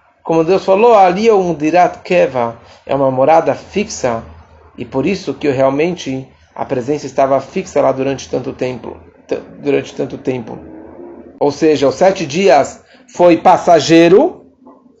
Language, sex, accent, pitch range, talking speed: English, male, Brazilian, 135-200 Hz, 145 wpm